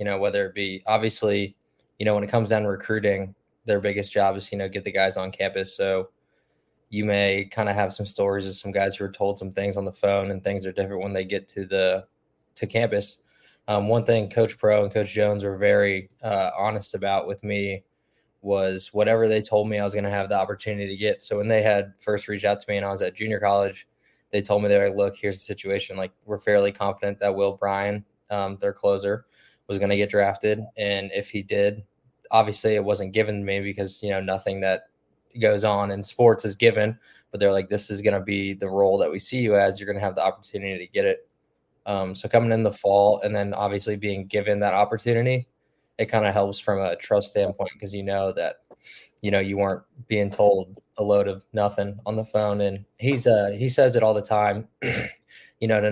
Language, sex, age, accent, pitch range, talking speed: English, male, 20-39, American, 100-105 Hz, 235 wpm